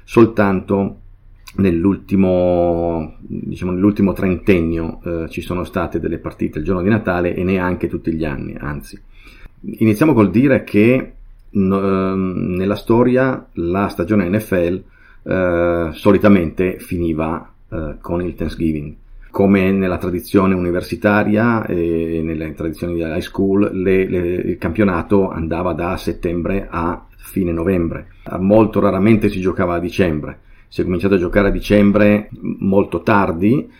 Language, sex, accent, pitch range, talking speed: Italian, male, native, 85-100 Hz, 130 wpm